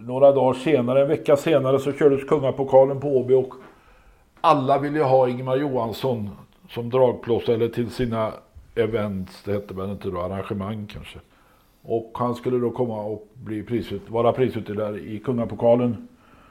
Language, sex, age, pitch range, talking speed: Swedish, male, 60-79, 115-140 Hz, 155 wpm